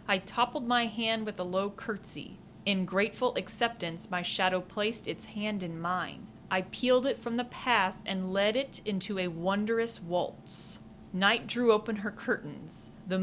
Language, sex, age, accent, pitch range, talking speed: English, female, 30-49, American, 190-225 Hz, 170 wpm